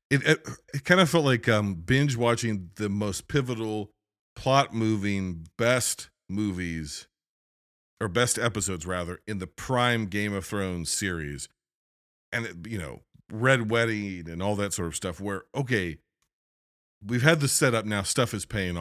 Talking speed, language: 160 wpm, English